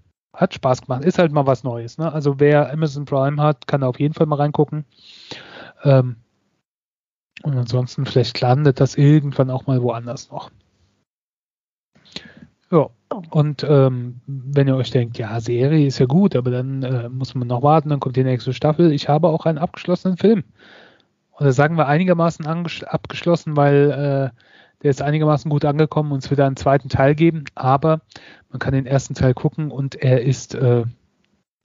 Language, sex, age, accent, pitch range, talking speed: German, male, 30-49, German, 130-160 Hz, 180 wpm